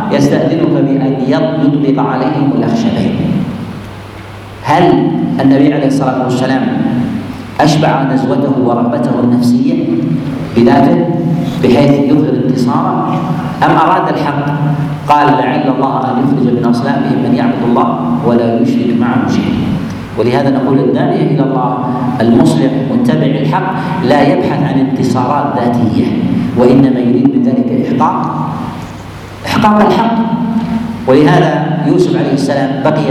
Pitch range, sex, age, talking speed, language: 130-160 Hz, male, 50-69, 105 wpm, Arabic